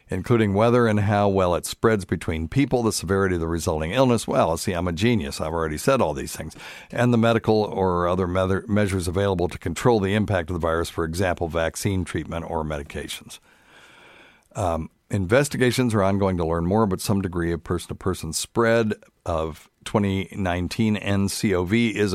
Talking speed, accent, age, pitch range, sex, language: 170 wpm, American, 50-69, 85-110 Hz, male, English